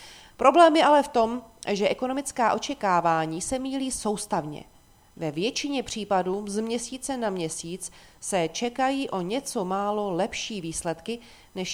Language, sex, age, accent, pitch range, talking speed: Czech, female, 40-59, native, 180-235 Hz, 135 wpm